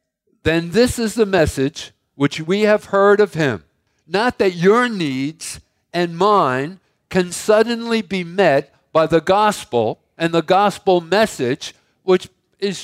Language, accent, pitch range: English, American, 135-190 Hz